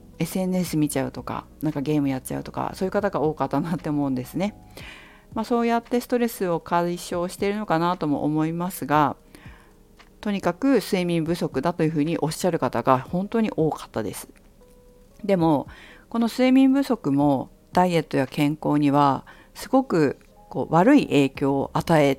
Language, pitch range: Japanese, 130-195 Hz